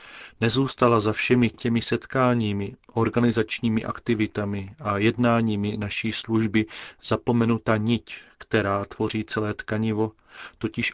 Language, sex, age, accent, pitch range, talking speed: Czech, male, 40-59, native, 100-115 Hz, 100 wpm